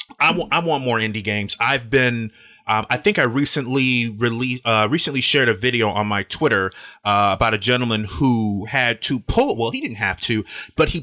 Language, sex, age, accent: English, male, 30-49, American